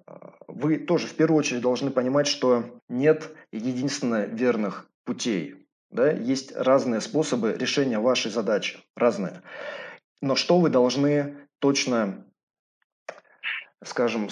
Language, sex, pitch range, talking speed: Russian, male, 125-150 Hz, 105 wpm